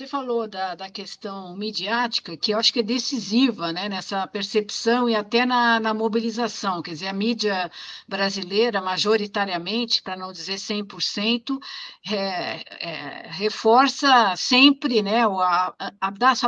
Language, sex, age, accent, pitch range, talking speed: Portuguese, female, 50-69, Brazilian, 205-250 Hz, 125 wpm